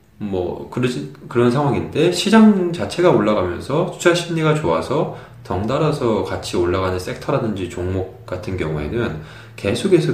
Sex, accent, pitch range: male, native, 90-135 Hz